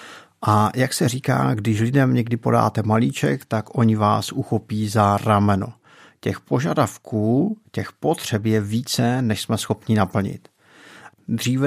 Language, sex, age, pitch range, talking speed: Czech, male, 50-69, 105-125 Hz, 135 wpm